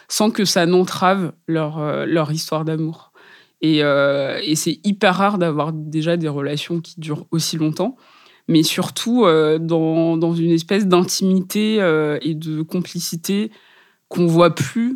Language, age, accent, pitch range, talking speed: French, 20-39, French, 155-185 Hz, 155 wpm